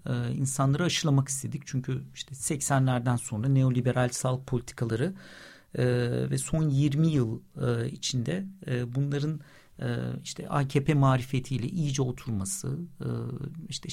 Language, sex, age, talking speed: Turkish, male, 50-69, 95 wpm